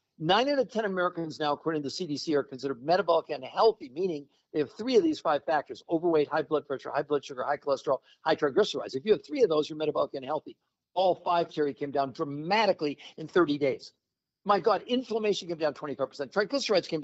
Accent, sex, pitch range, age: American, male, 150-210 Hz, 60-79